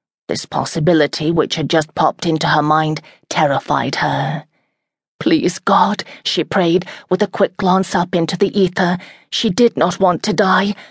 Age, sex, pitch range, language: 30-49, female, 155-195 Hz, English